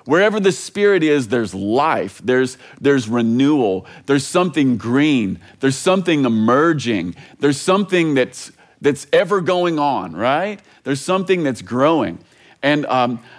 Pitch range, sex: 135-195 Hz, male